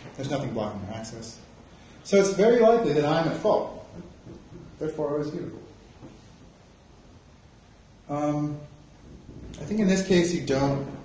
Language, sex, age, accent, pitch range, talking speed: English, female, 20-39, American, 110-145 Hz, 135 wpm